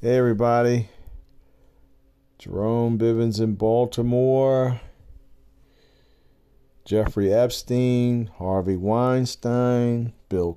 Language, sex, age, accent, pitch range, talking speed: English, male, 50-69, American, 100-130 Hz, 60 wpm